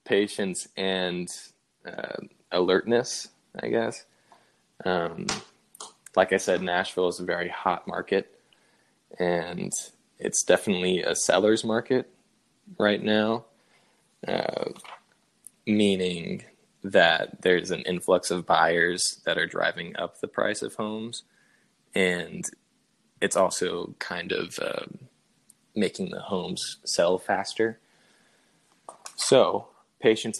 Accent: American